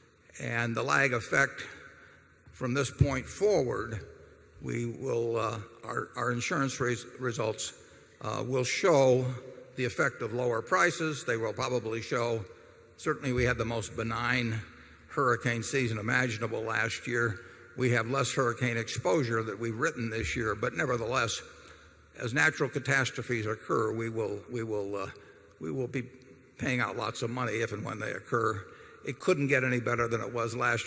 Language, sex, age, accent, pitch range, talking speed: English, male, 60-79, American, 115-130 Hz, 150 wpm